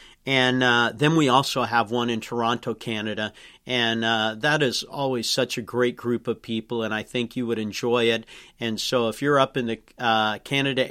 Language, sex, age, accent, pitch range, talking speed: English, male, 50-69, American, 115-135 Hz, 205 wpm